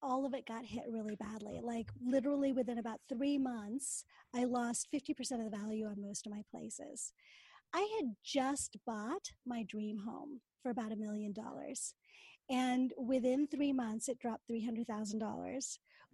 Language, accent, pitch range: English, American, 230-285 Hz